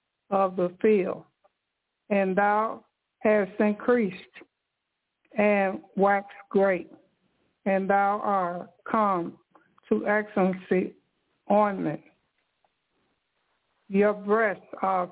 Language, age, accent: English, 60-79, American